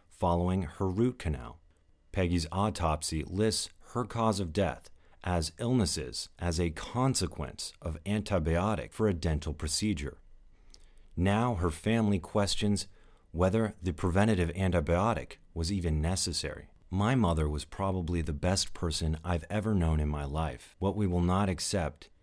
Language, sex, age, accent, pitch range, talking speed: English, male, 40-59, American, 80-100 Hz, 140 wpm